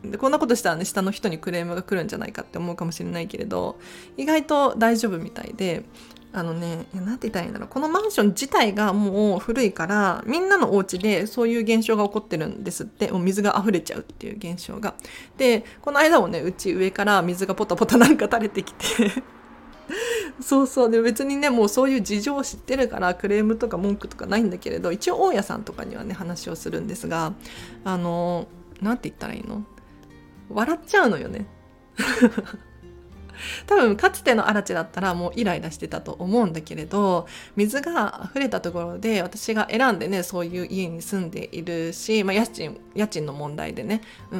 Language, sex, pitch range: Japanese, female, 180-240 Hz